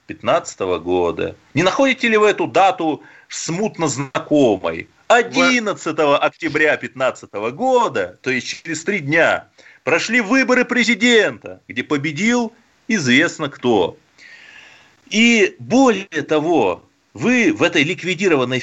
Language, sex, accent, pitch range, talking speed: Russian, male, native, 125-215 Hz, 105 wpm